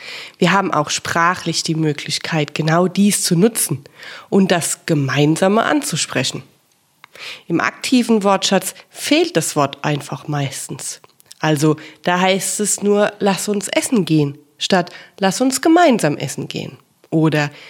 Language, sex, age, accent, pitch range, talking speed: German, female, 30-49, German, 155-200 Hz, 130 wpm